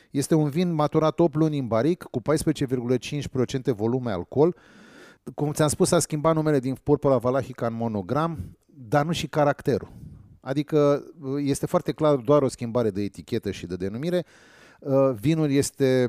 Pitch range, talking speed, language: 125-155 Hz, 155 wpm, Romanian